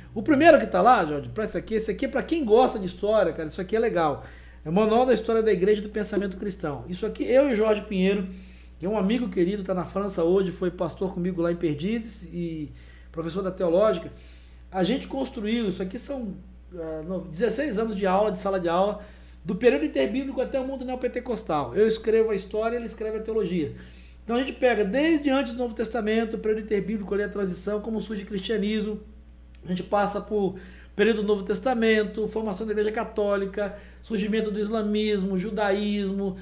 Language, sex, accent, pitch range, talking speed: Spanish, male, Brazilian, 190-225 Hz, 205 wpm